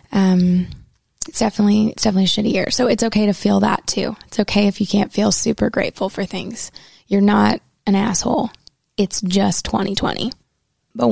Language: English